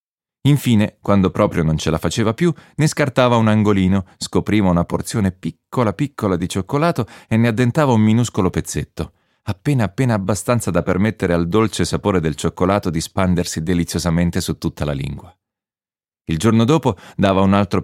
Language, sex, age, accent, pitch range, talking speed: Italian, male, 30-49, native, 85-120 Hz, 160 wpm